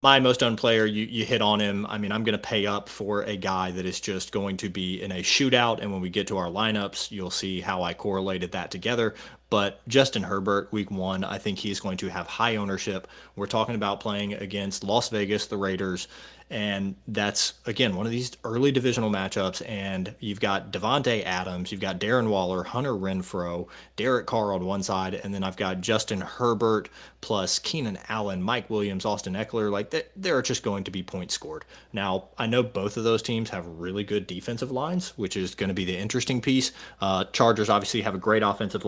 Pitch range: 95-110 Hz